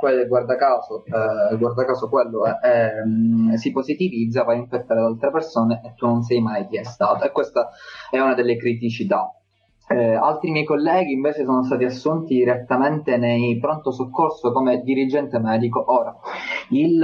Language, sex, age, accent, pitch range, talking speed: Italian, male, 20-39, native, 115-140 Hz, 160 wpm